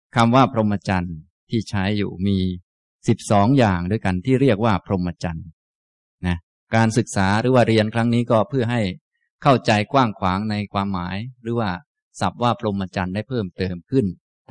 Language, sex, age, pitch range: Thai, male, 20-39, 95-115 Hz